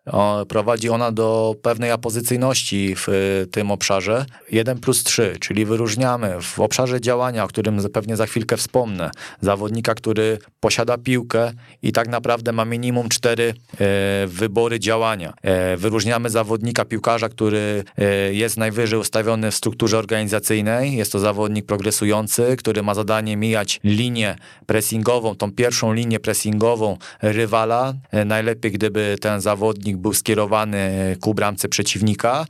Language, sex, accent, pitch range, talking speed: Polish, male, native, 105-115 Hz, 125 wpm